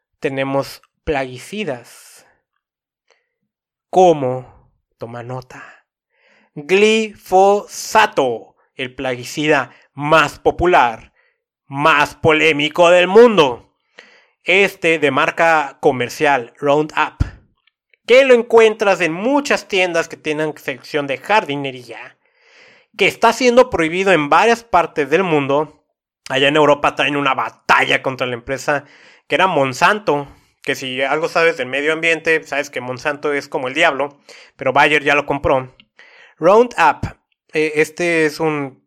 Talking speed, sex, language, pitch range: 115 wpm, male, Spanish, 140-200 Hz